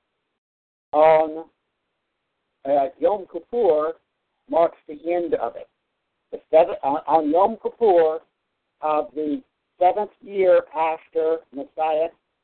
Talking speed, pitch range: 105 wpm, 150-195 Hz